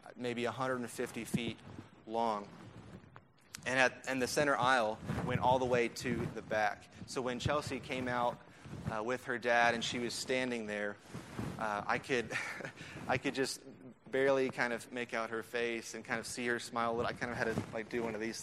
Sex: male